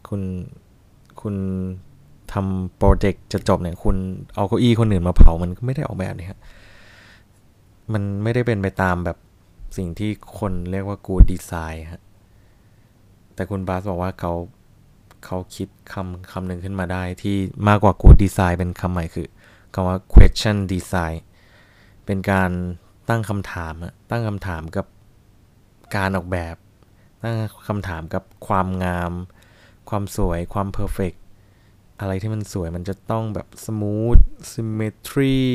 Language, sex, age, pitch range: Thai, male, 20-39, 95-110 Hz